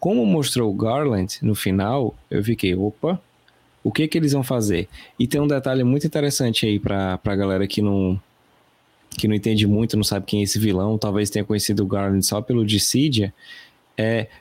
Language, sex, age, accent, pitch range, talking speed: Portuguese, male, 20-39, Brazilian, 105-135 Hz, 185 wpm